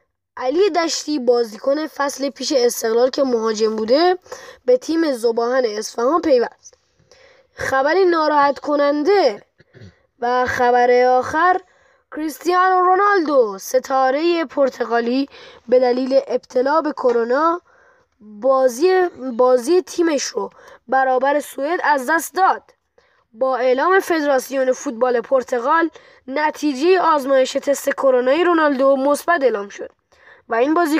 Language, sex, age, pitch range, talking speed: Persian, female, 20-39, 255-345 Hz, 105 wpm